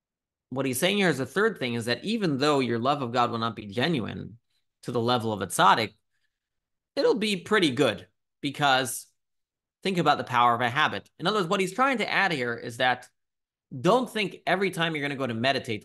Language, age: English, 30-49